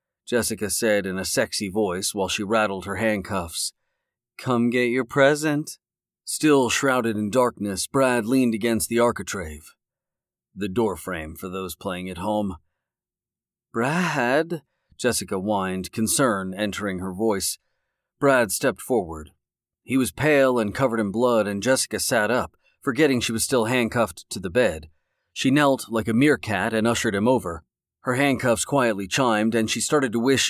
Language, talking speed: English, 155 wpm